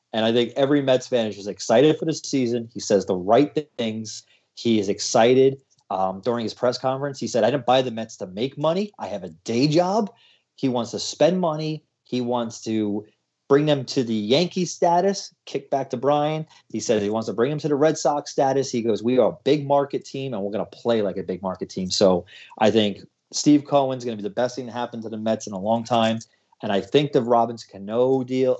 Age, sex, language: 30-49, male, English